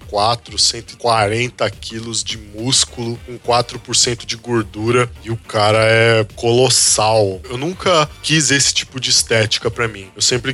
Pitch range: 115-135 Hz